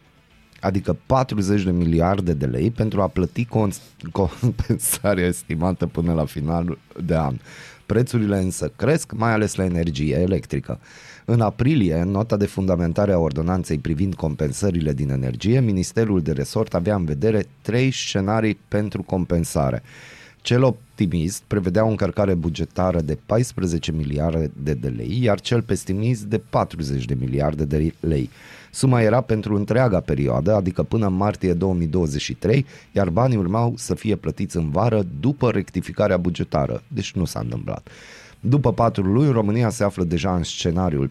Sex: male